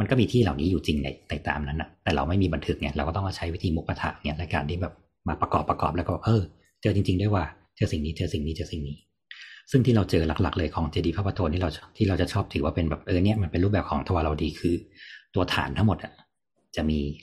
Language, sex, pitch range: Thai, male, 80-100 Hz